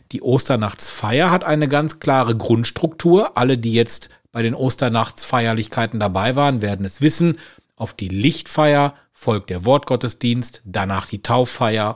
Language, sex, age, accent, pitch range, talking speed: German, male, 40-59, German, 115-150 Hz, 135 wpm